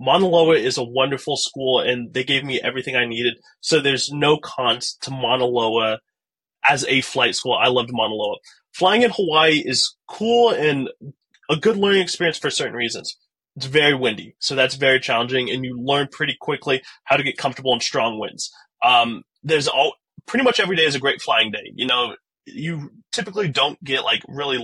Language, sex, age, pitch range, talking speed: English, male, 20-39, 125-155 Hz, 195 wpm